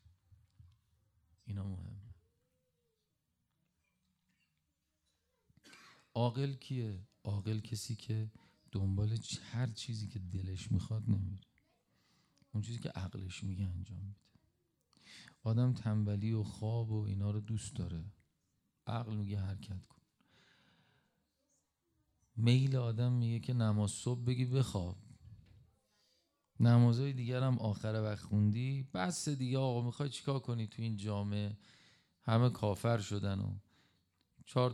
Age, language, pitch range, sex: 40-59, Persian, 100-120 Hz, male